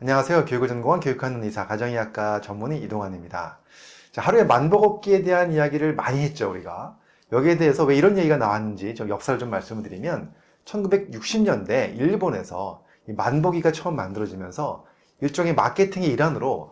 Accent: native